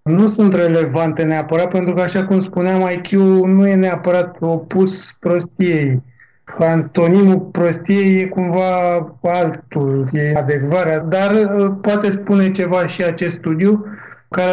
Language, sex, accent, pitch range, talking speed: Romanian, male, native, 165-190 Hz, 125 wpm